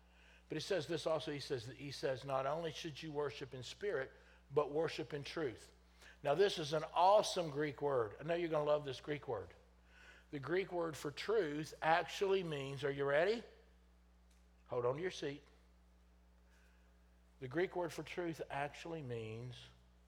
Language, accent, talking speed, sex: English, American, 175 wpm, male